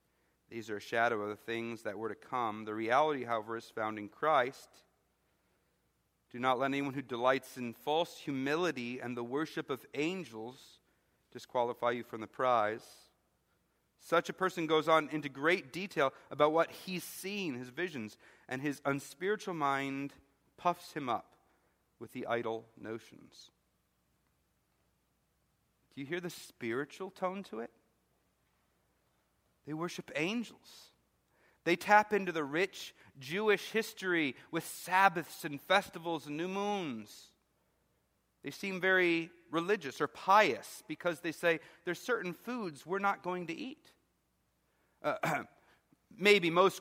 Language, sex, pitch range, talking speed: English, male, 120-175 Hz, 135 wpm